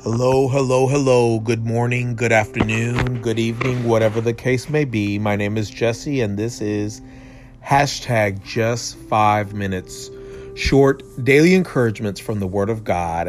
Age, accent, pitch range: 40-59, American, 105-130 Hz